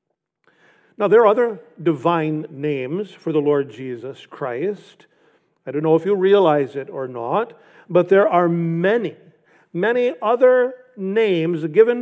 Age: 50-69